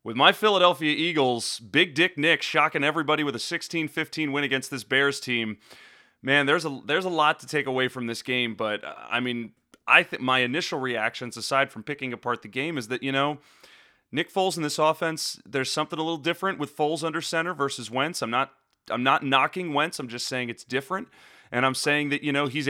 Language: English